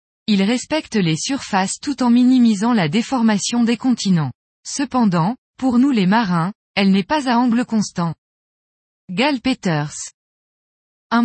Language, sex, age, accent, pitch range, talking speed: French, female, 20-39, French, 185-245 Hz, 130 wpm